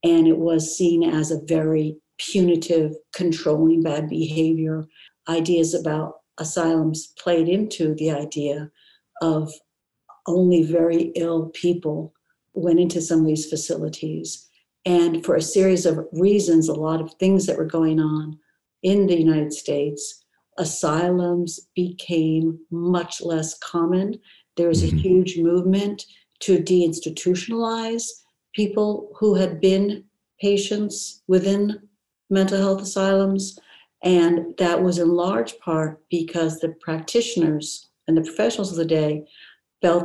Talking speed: 125 wpm